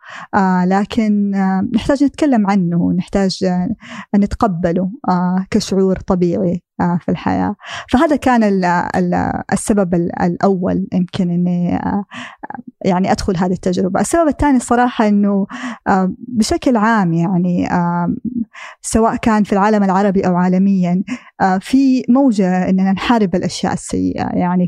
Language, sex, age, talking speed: Arabic, female, 20-39, 100 wpm